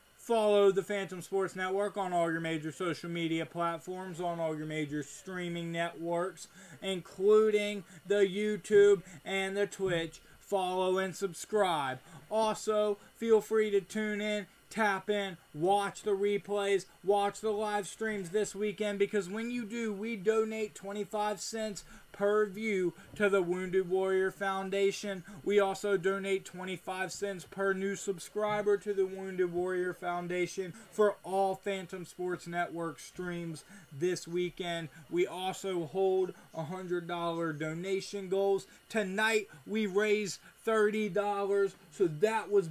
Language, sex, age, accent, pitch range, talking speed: English, male, 20-39, American, 175-205 Hz, 135 wpm